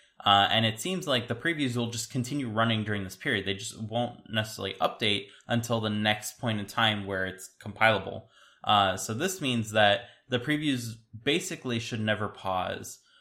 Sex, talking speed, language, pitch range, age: male, 175 wpm, English, 100-120 Hz, 20-39